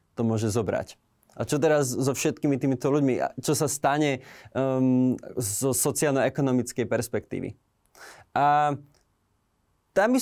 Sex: male